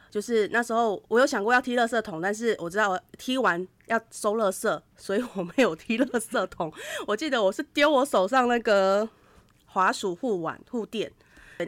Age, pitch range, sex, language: 20-39, 170-225 Hz, female, Chinese